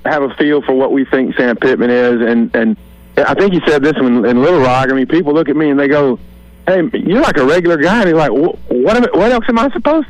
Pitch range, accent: 110-155 Hz, American